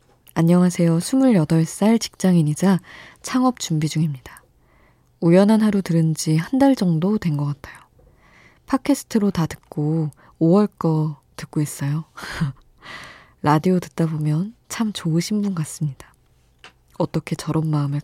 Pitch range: 145-170 Hz